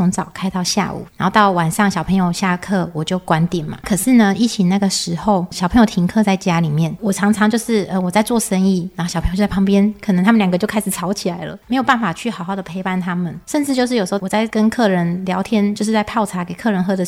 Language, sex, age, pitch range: Chinese, female, 20-39, 180-215 Hz